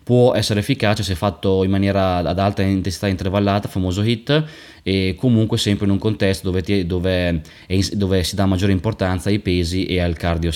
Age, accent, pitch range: 20-39, native, 95-110 Hz